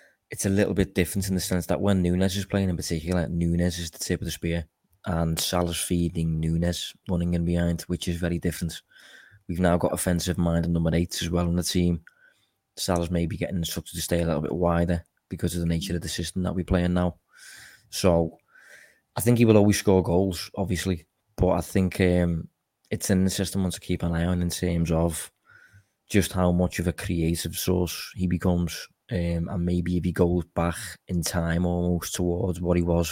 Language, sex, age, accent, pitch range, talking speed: English, male, 20-39, British, 85-90 Hz, 210 wpm